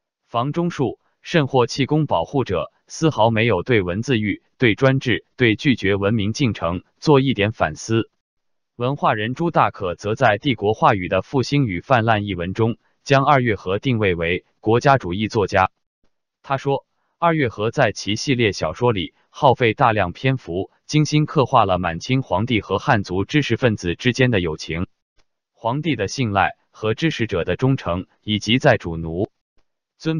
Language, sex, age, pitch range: Chinese, male, 20-39, 100-140 Hz